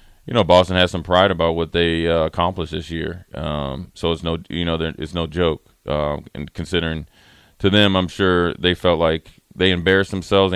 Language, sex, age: English, male, 20-39